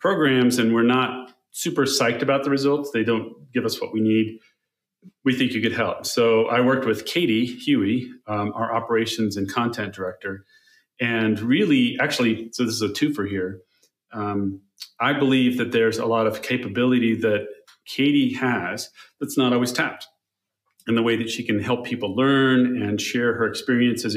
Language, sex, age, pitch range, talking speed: English, male, 40-59, 110-135 Hz, 175 wpm